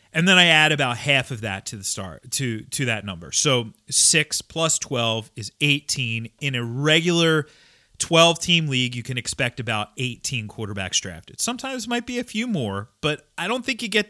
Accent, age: American, 30-49